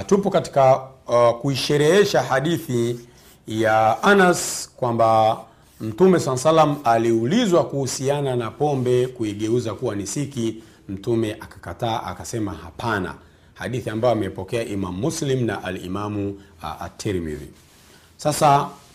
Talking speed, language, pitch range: 100 wpm, Swahili, 115-160 Hz